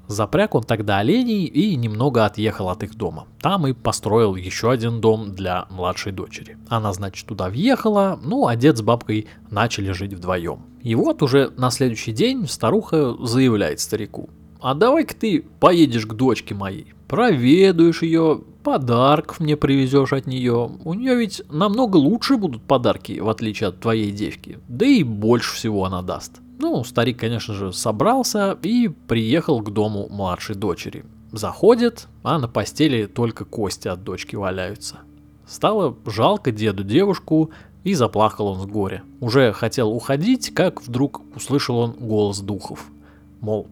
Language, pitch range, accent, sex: Russian, 105-150 Hz, native, male